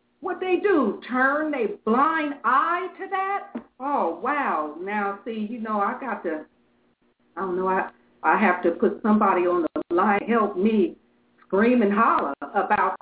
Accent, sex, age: American, female, 50-69